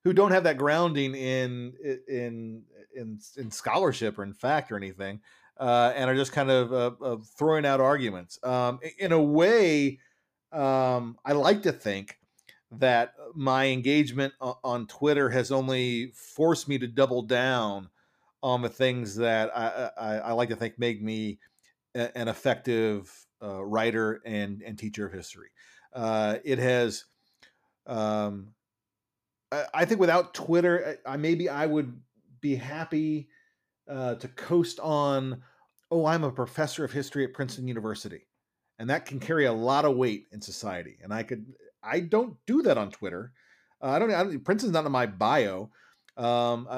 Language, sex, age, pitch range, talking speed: English, male, 40-59, 120-150 Hz, 160 wpm